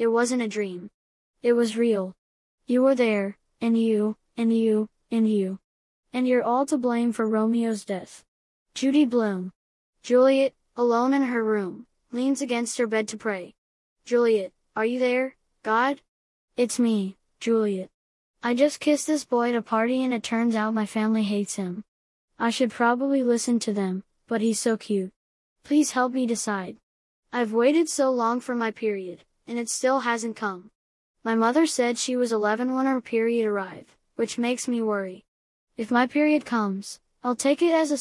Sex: female